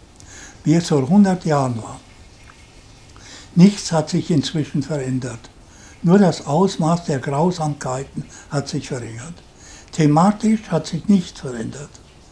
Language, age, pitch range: German, 60-79, 135-170 Hz